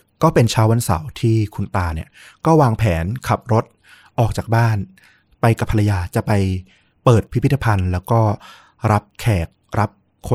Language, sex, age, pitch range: Thai, male, 20-39, 95-115 Hz